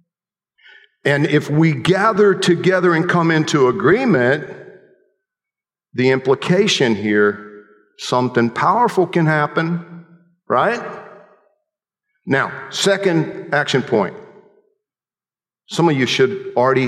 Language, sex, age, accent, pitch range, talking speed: English, male, 50-69, American, 140-200 Hz, 90 wpm